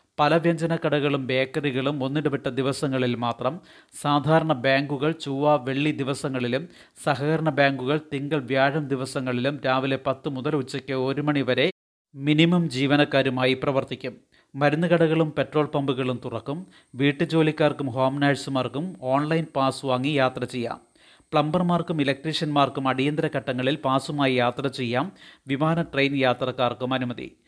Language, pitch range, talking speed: Malayalam, 130-150 Hz, 105 wpm